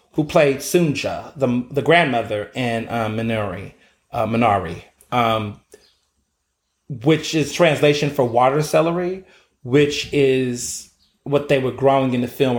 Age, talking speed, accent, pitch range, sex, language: 30-49, 130 wpm, American, 115-190 Hz, male, English